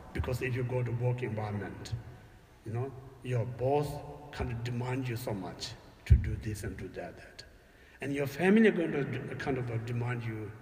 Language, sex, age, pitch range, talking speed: English, male, 60-79, 115-165 Hz, 190 wpm